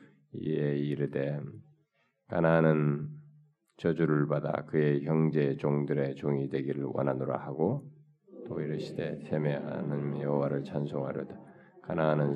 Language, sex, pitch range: Korean, male, 70-100 Hz